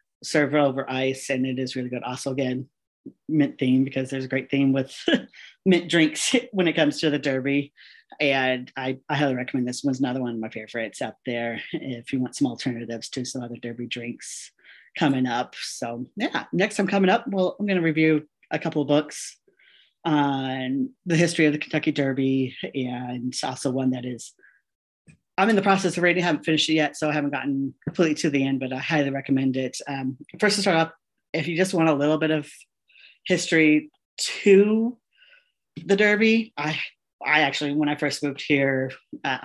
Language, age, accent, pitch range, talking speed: English, 40-59, American, 130-155 Hz, 200 wpm